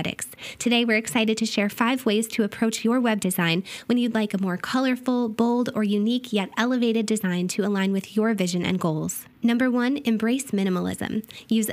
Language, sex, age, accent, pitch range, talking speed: English, female, 20-39, American, 195-235 Hz, 185 wpm